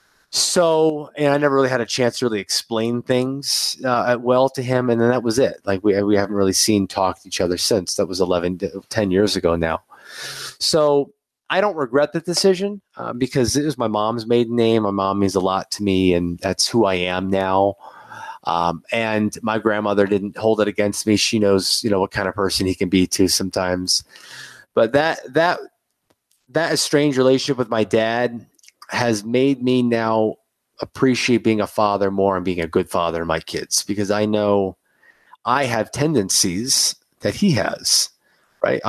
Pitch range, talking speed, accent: 100-130 Hz, 195 wpm, American